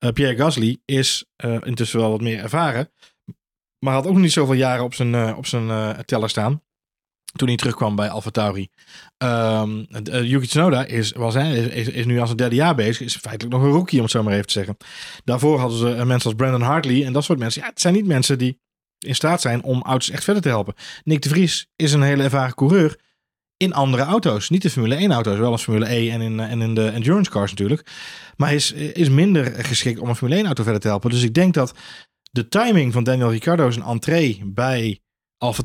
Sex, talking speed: male, 230 wpm